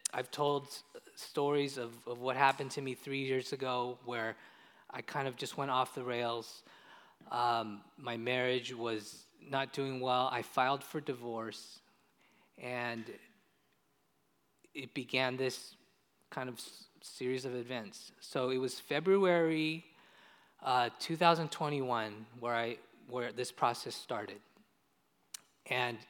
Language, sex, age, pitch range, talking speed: English, male, 20-39, 125-165 Hz, 120 wpm